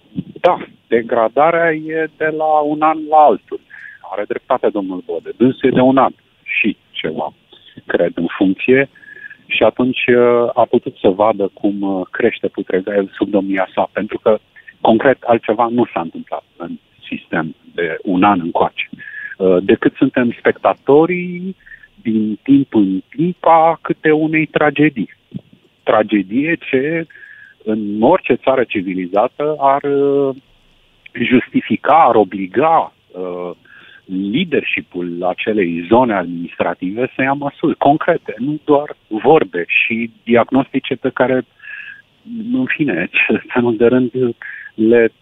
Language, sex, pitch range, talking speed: Romanian, male, 105-155 Hz, 120 wpm